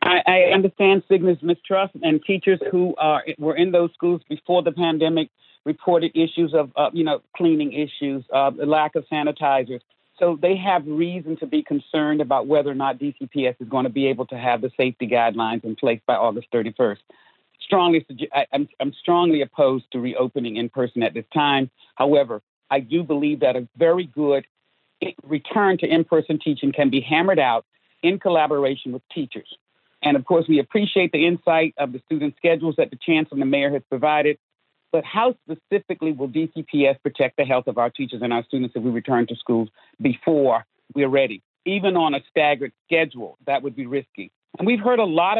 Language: English